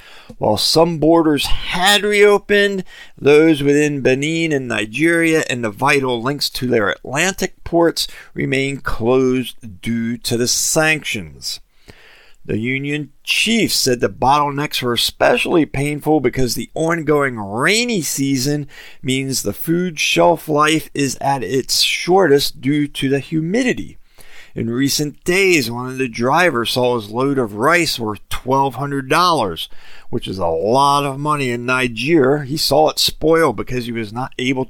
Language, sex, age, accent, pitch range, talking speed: English, male, 40-59, American, 125-160 Hz, 140 wpm